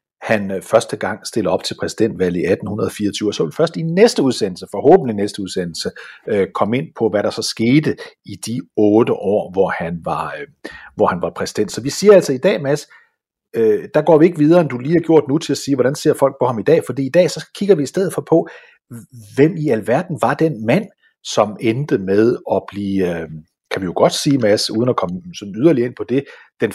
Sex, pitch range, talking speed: male, 105-170 Hz, 230 wpm